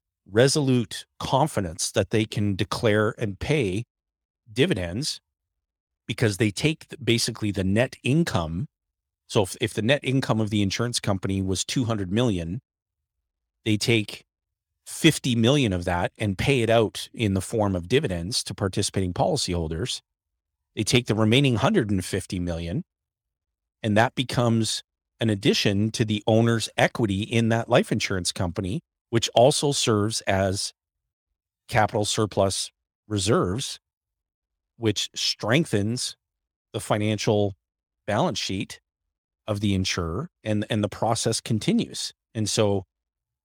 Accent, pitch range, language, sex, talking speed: American, 85-115 Hz, English, male, 125 wpm